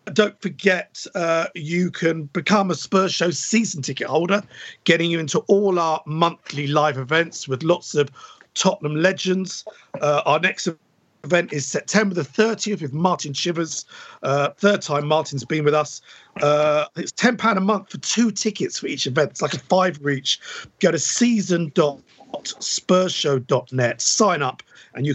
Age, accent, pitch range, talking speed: 50-69, British, 145-190 Hz, 160 wpm